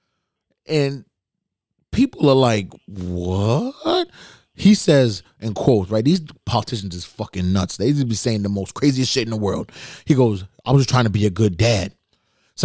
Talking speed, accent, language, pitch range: 180 wpm, American, English, 110-145 Hz